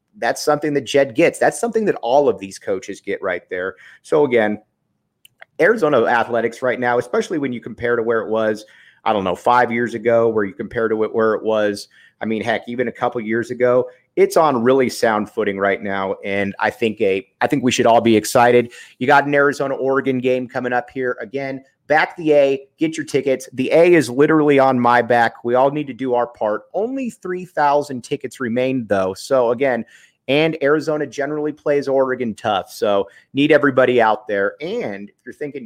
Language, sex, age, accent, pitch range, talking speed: English, male, 30-49, American, 115-155 Hz, 200 wpm